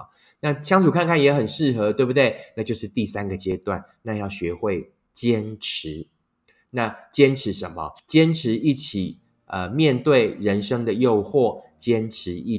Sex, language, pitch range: male, Chinese, 100-145 Hz